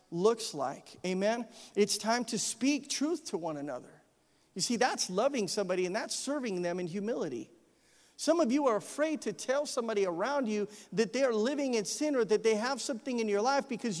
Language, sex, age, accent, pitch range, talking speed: English, male, 40-59, American, 230-300 Hz, 200 wpm